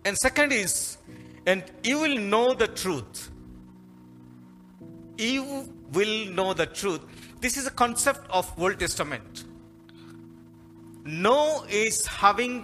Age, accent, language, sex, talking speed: 50-69, native, Telugu, male, 115 wpm